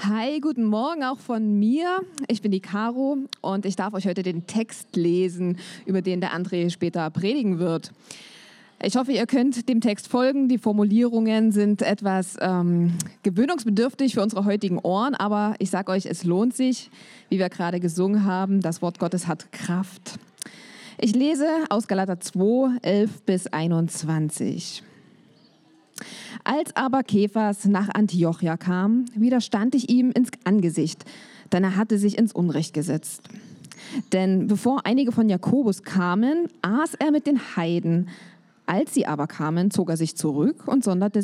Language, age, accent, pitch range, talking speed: German, 20-39, German, 180-240 Hz, 155 wpm